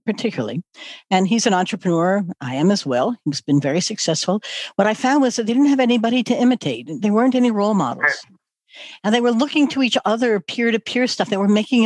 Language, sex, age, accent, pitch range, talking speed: English, female, 60-79, American, 200-260 Hz, 210 wpm